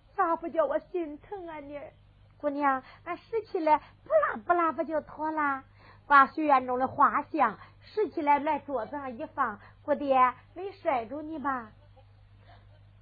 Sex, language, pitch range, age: female, Chinese, 250-335 Hz, 50-69